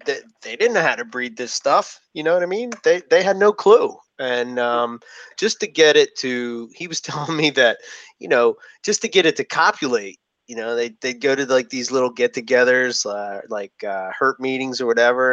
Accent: American